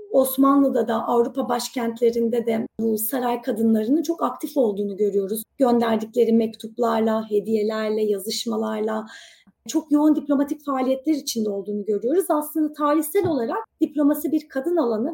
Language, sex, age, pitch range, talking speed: Turkish, female, 30-49, 240-310 Hz, 120 wpm